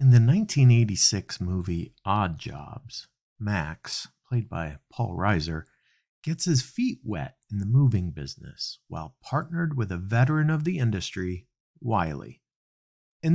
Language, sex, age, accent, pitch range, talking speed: English, male, 50-69, American, 90-135 Hz, 130 wpm